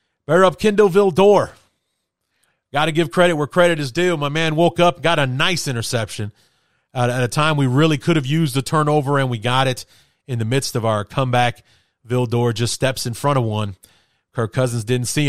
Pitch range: 110-135 Hz